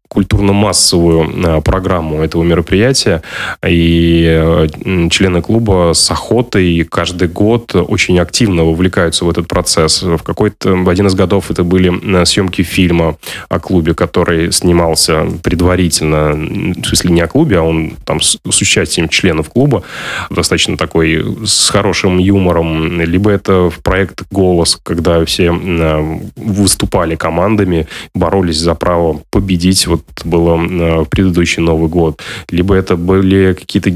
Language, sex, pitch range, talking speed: Russian, male, 85-95 Hz, 130 wpm